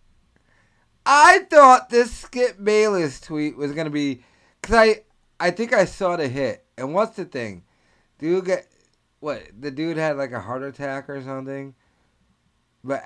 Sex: male